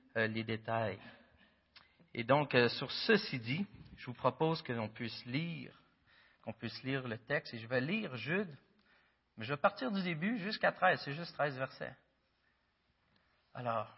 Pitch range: 130-210 Hz